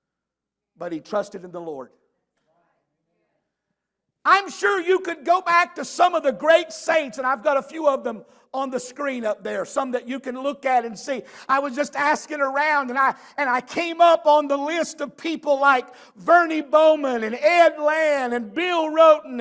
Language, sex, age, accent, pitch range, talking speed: English, male, 50-69, American, 255-335 Hz, 195 wpm